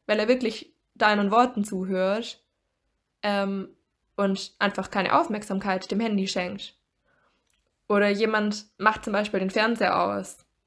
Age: 20-39